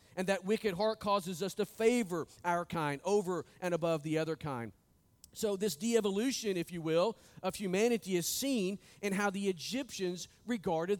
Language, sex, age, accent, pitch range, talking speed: English, male, 40-59, American, 155-215 Hz, 170 wpm